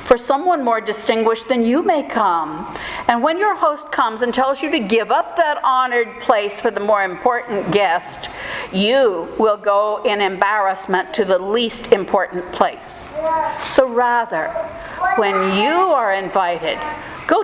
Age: 60-79